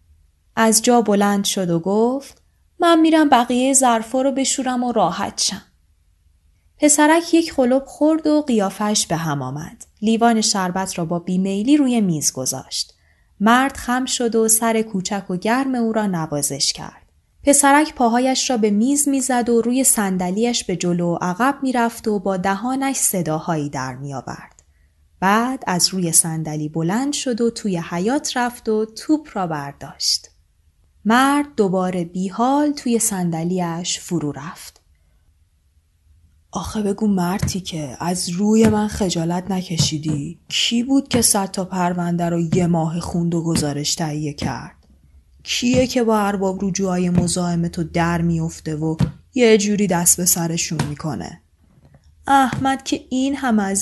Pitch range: 160-235 Hz